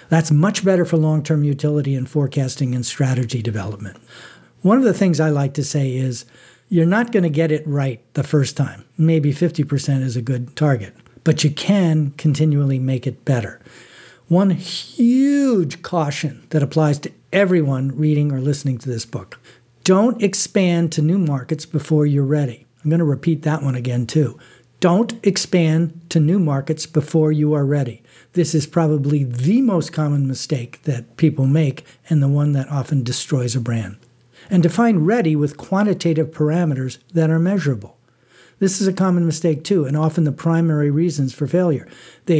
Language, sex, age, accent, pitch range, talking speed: English, male, 50-69, American, 130-165 Hz, 175 wpm